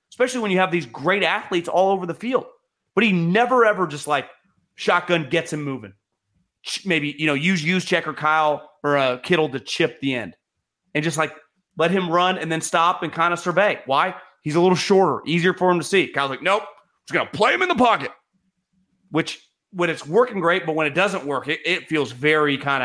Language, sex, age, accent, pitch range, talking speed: English, male, 30-49, American, 145-180 Hz, 225 wpm